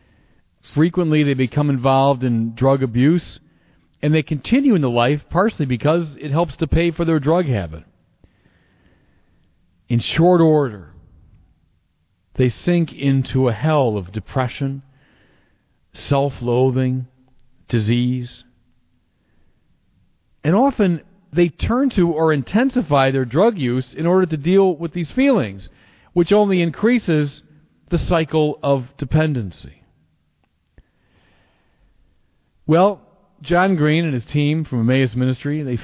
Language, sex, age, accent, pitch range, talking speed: English, male, 40-59, American, 110-155 Hz, 115 wpm